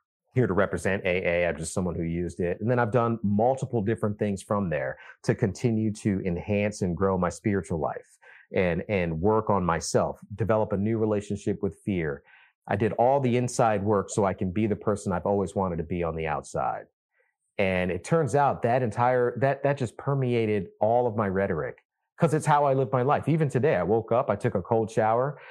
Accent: American